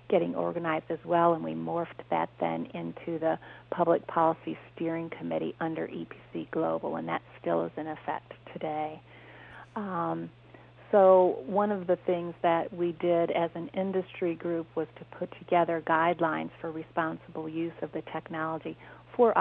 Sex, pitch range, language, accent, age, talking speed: female, 160-175 Hz, English, American, 50-69, 155 wpm